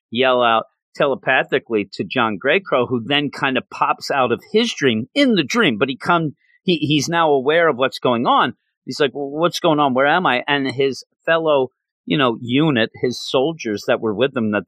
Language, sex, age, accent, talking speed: English, male, 40-59, American, 210 wpm